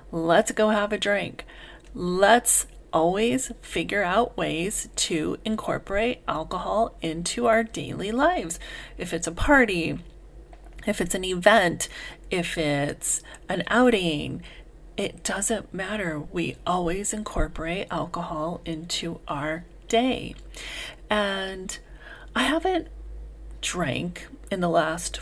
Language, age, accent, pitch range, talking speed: English, 40-59, American, 165-220 Hz, 110 wpm